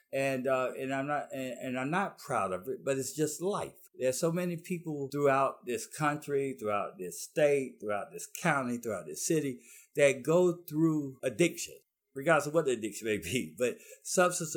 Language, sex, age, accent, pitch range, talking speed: English, male, 60-79, American, 125-170 Hz, 185 wpm